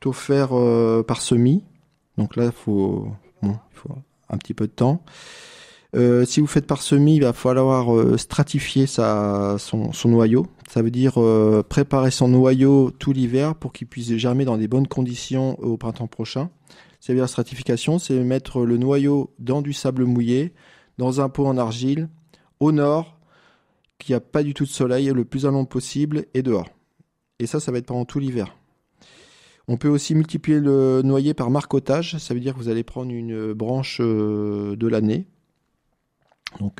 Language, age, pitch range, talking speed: French, 20-39, 115-145 Hz, 180 wpm